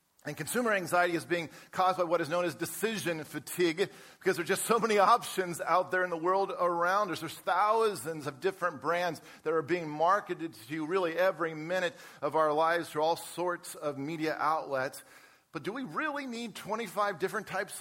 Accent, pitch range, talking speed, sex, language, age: American, 155-195 Hz, 190 wpm, male, English, 40-59